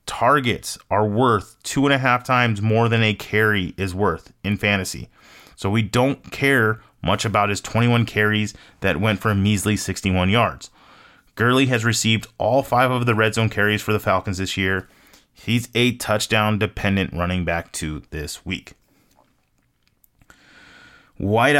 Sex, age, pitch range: male, 30-49, 100-125 Hz